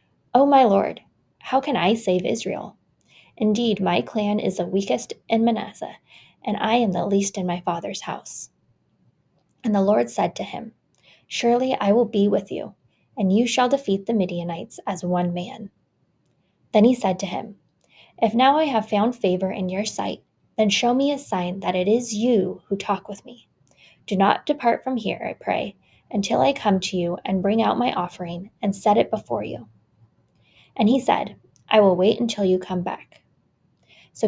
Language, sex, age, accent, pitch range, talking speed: English, female, 10-29, American, 190-230 Hz, 185 wpm